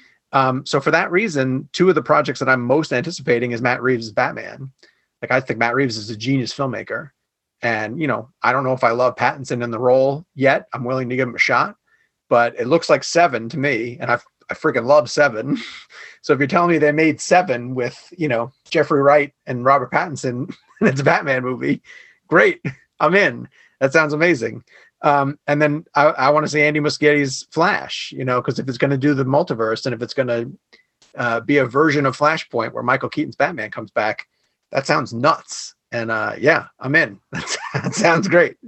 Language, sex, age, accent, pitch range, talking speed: English, male, 30-49, American, 125-155 Hz, 210 wpm